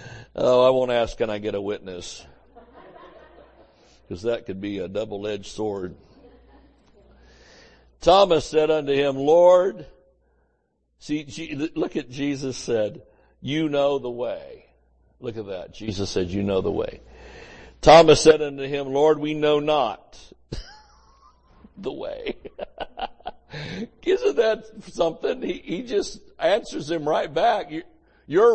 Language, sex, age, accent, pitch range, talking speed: English, male, 60-79, American, 100-170 Hz, 125 wpm